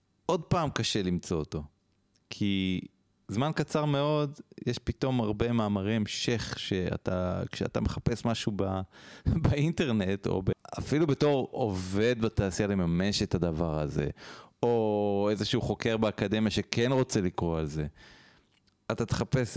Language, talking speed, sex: Hebrew, 125 wpm, male